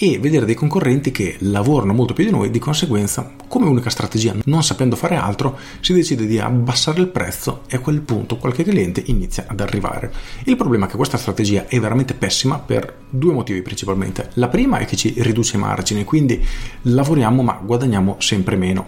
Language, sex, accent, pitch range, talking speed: Italian, male, native, 105-135 Hz, 195 wpm